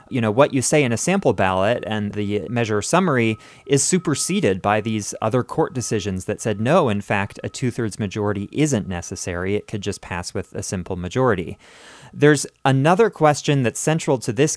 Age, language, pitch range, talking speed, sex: 30-49, English, 100-130 Hz, 190 wpm, male